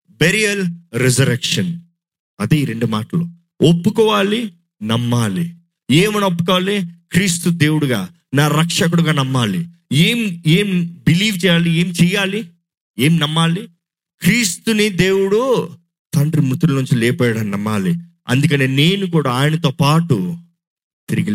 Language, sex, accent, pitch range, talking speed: Telugu, male, native, 145-175 Hz, 100 wpm